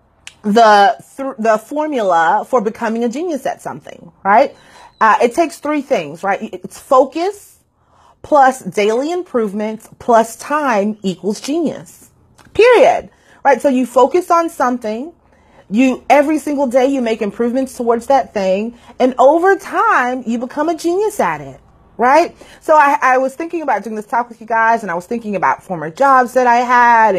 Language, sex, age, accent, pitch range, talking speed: English, female, 30-49, American, 195-265 Hz, 165 wpm